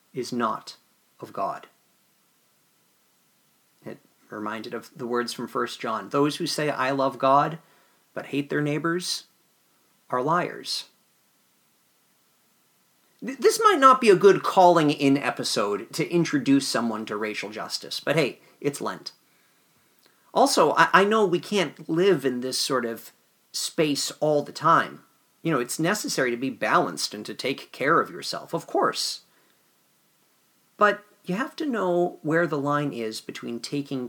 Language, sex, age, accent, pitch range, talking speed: English, male, 40-59, American, 125-170 Hz, 150 wpm